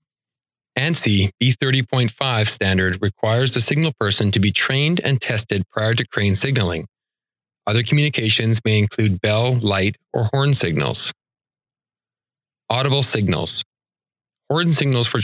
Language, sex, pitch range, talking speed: English, male, 100-130 Hz, 120 wpm